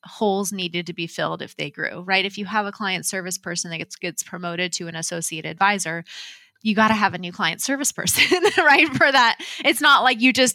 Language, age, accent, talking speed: English, 20-39, American, 235 wpm